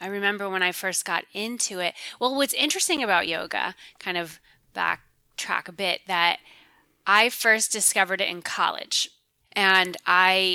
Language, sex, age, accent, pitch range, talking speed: English, female, 20-39, American, 170-210 Hz, 155 wpm